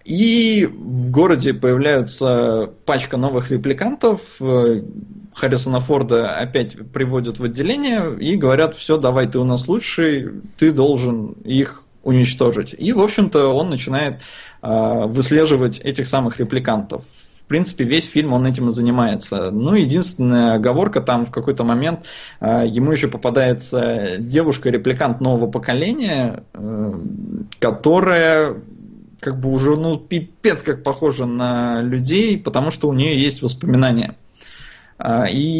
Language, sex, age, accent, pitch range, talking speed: Russian, male, 20-39, native, 125-160 Hz, 125 wpm